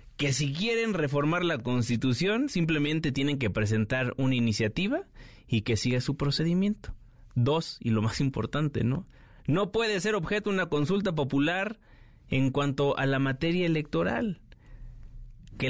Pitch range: 115-150 Hz